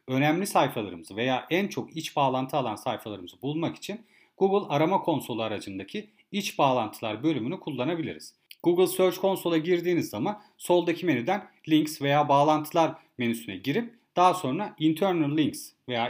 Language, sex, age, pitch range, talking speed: Turkish, male, 40-59, 130-190 Hz, 135 wpm